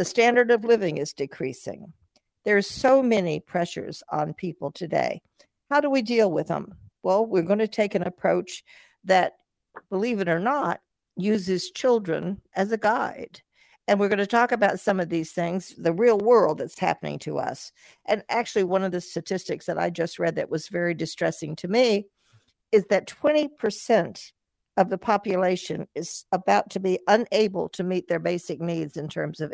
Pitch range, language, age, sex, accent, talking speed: 170-220 Hz, English, 60-79, female, American, 180 wpm